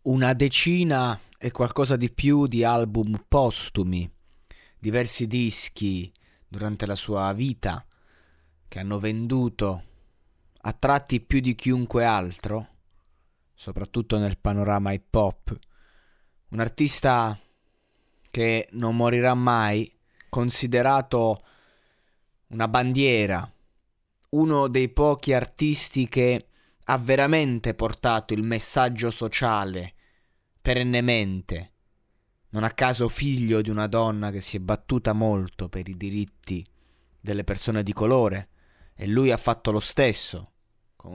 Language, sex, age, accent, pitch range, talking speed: Italian, male, 30-49, native, 100-125 Hz, 110 wpm